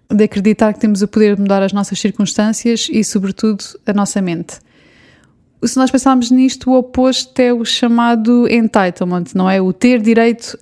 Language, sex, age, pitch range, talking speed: Portuguese, female, 20-39, 205-235 Hz, 175 wpm